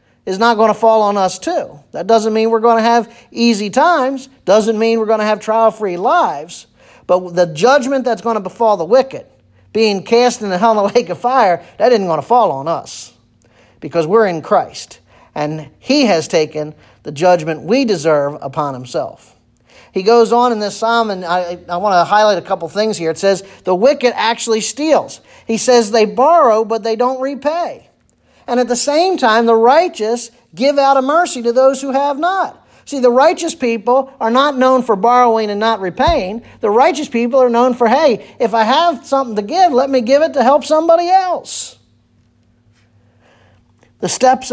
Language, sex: English, male